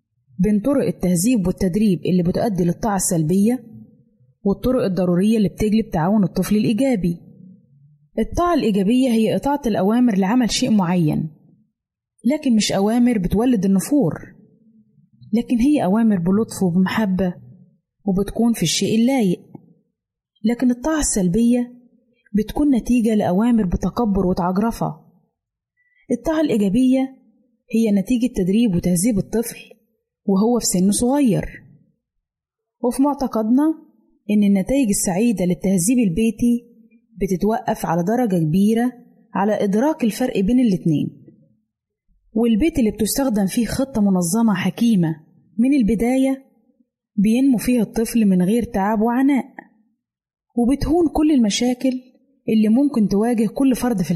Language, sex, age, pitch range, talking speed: Arabic, female, 20-39, 195-245 Hz, 105 wpm